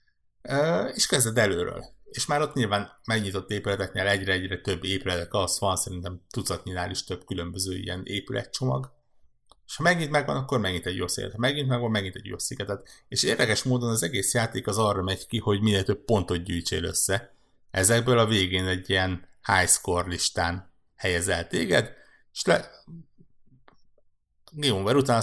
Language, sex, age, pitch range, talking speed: Hungarian, male, 60-79, 90-110 Hz, 160 wpm